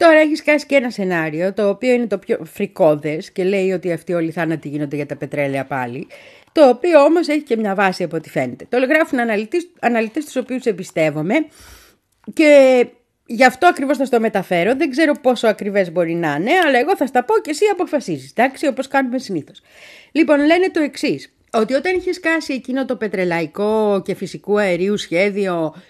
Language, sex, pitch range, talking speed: Greek, female, 165-255 Hz, 190 wpm